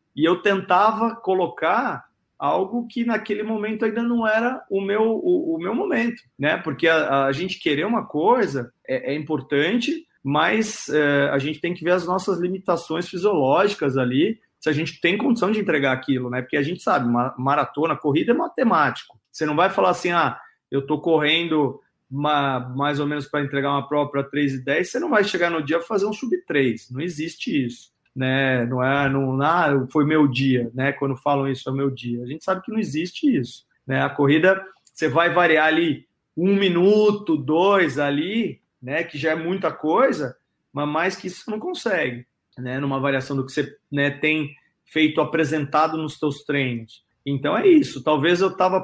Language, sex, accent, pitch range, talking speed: Portuguese, male, Brazilian, 140-190 Hz, 190 wpm